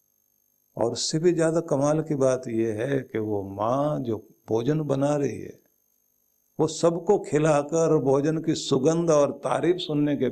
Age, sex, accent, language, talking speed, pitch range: 50-69, male, native, Hindi, 155 wpm, 115-155 Hz